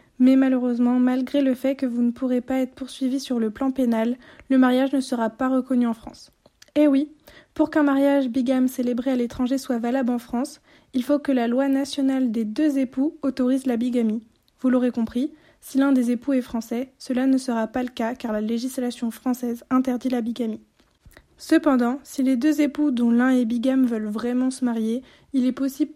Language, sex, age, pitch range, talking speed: French, female, 20-39, 245-270 Hz, 200 wpm